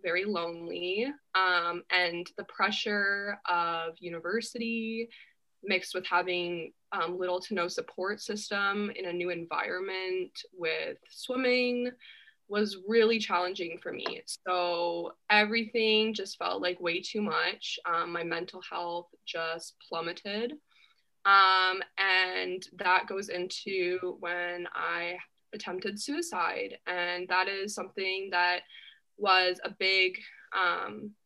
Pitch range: 175-220 Hz